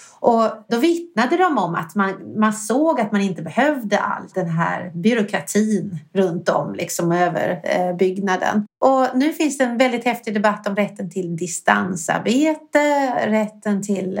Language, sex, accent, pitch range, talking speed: Swedish, female, native, 185-235 Hz, 150 wpm